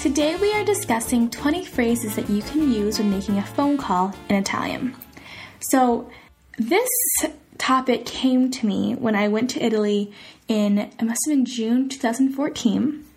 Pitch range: 210-265 Hz